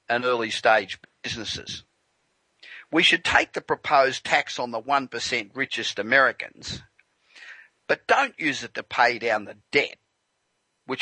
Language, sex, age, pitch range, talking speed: English, male, 50-69, 120-150 Hz, 130 wpm